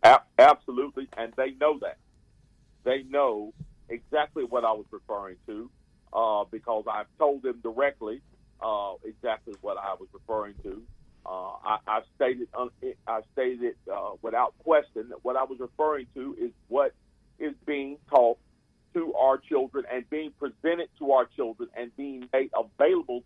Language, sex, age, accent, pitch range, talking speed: English, male, 50-69, American, 125-210 Hz, 160 wpm